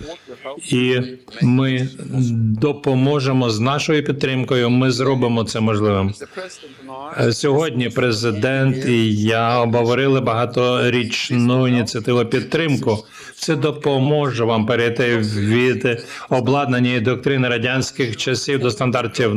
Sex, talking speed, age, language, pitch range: male, 90 wpm, 50-69, Ukrainian, 120-140 Hz